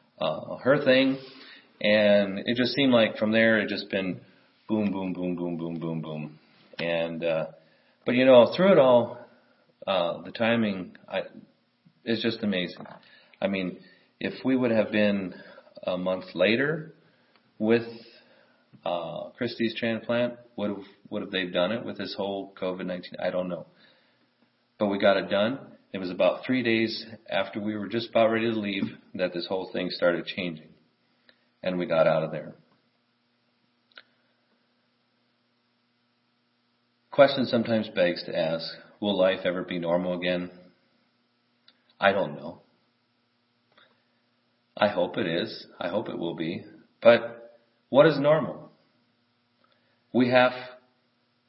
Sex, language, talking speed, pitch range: male, English, 140 wpm, 90-120 Hz